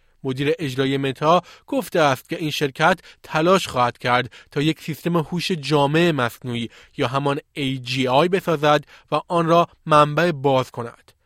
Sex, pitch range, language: male, 135-165 Hz, Persian